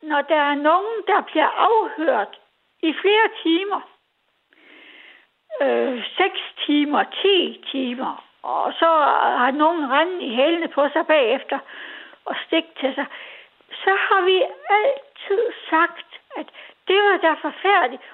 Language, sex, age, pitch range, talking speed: Danish, female, 60-79, 290-380 Hz, 130 wpm